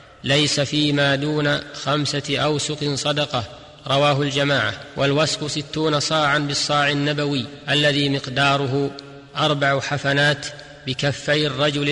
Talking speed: 95 wpm